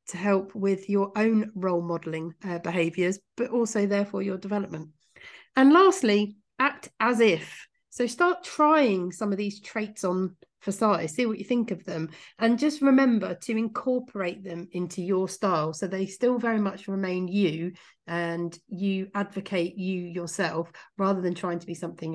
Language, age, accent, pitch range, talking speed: English, 40-59, British, 175-245 Hz, 165 wpm